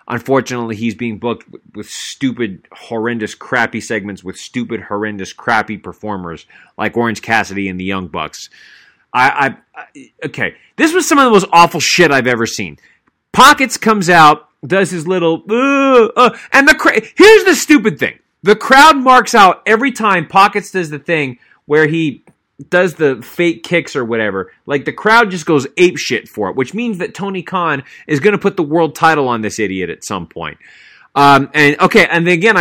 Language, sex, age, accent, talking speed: English, male, 30-49, American, 190 wpm